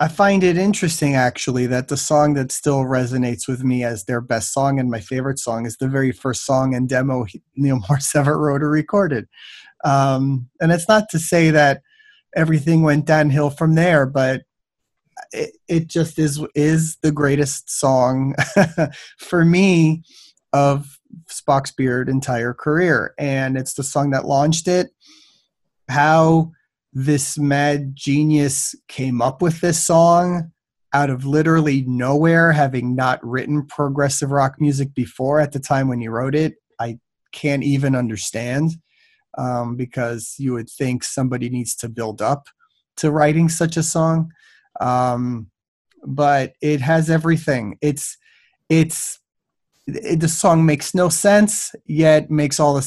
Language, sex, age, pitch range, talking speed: English, male, 30-49, 130-160 Hz, 150 wpm